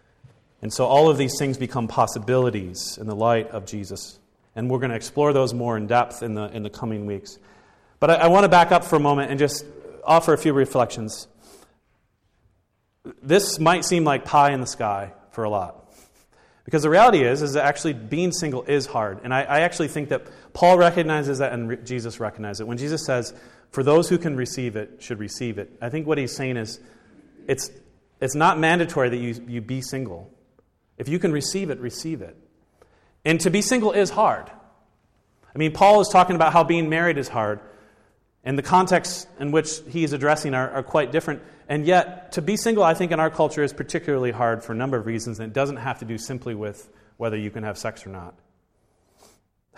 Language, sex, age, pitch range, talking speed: English, male, 40-59, 115-155 Hz, 210 wpm